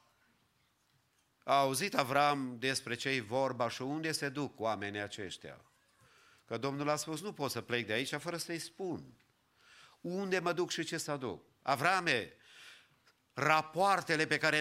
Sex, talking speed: male, 150 wpm